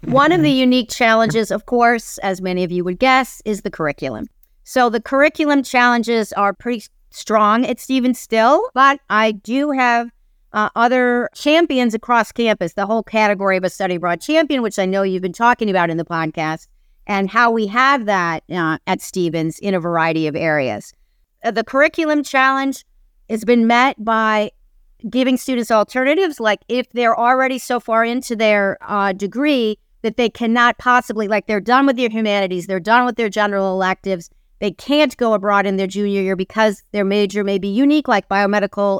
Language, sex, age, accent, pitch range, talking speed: English, female, 50-69, American, 195-250 Hz, 185 wpm